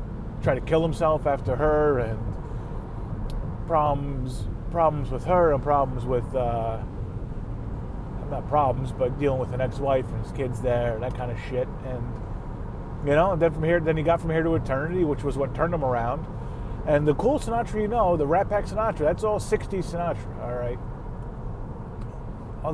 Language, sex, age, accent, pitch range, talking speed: English, male, 30-49, American, 115-145 Hz, 180 wpm